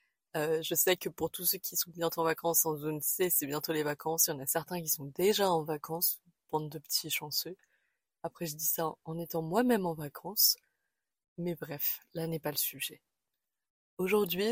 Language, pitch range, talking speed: French, 160-180 Hz, 205 wpm